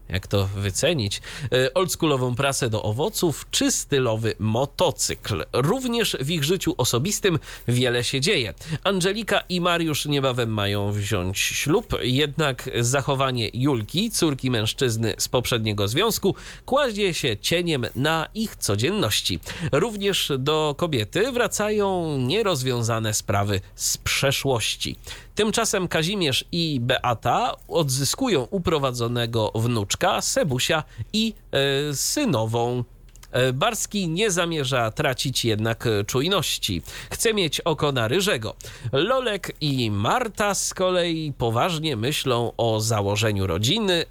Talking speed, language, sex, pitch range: 105 wpm, Polish, male, 115-165 Hz